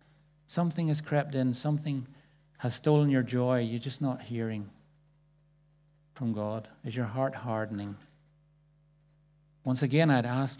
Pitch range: 125-150 Hz